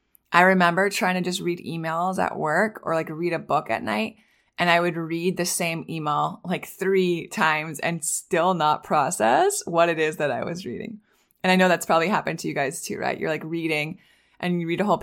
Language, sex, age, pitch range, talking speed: English, female, 20-39, 170-200 Hz, 225 wpm